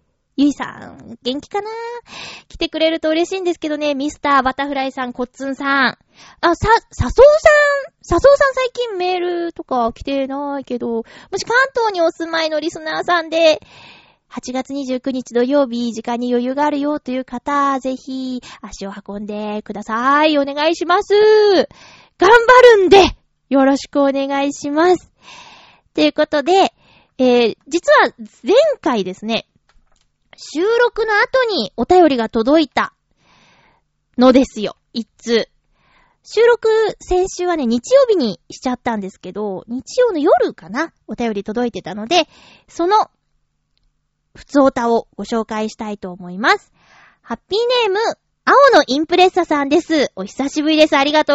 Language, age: Japanese, 20-39